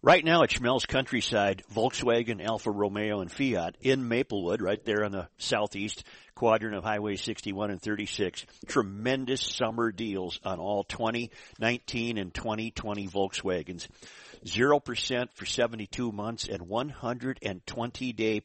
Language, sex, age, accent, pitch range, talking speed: English, male, 50-69, American, 100-125 Hz, 125 wpm